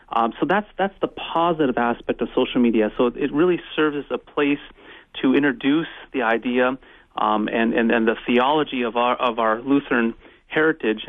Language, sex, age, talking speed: English, male, 30-49, 180 wpm